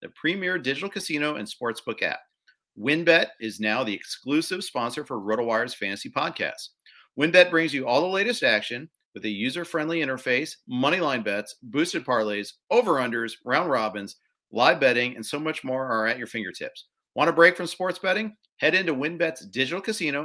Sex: male